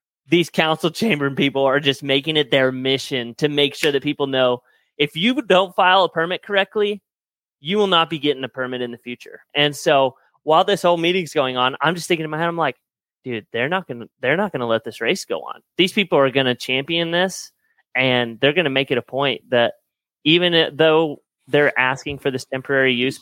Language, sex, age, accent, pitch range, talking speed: English, male, 30-49, American, 125-170 Hz, 220 wpm